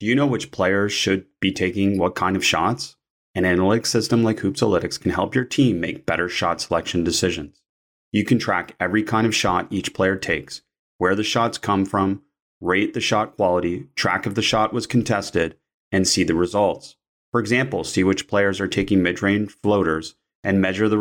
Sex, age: male, 30-49